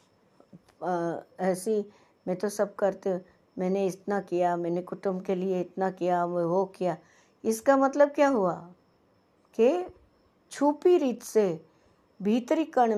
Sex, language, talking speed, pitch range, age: female, Hindi, 130 wpm, 190-265 Hz, 60-79